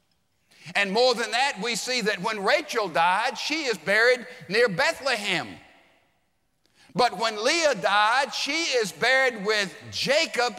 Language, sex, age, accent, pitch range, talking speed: English, male, 50-69, American, 215-280 Hz, 135 wpm